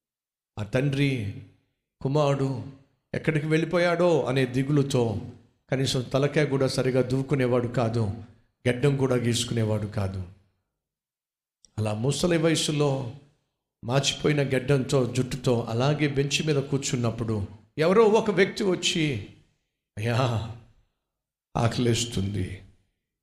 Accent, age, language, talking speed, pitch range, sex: native, 60-79, Telugu, 85 wpm, 110-150 Hz, male